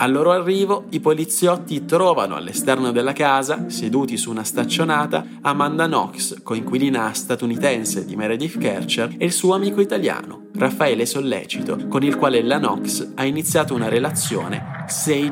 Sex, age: male, 20-39